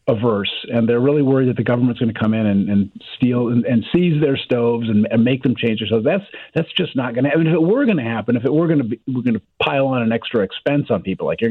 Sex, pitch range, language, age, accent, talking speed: male, 115-150 Hz, English, 40-59, American, 300 wpm